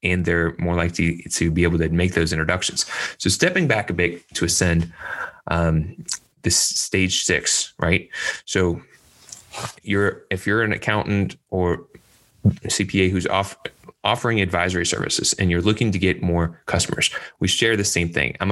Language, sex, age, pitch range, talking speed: English, male, 20-39, 85-100 Hz, 160 wpm